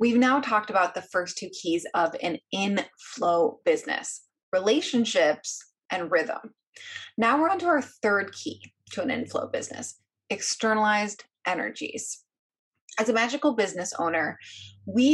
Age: 20-39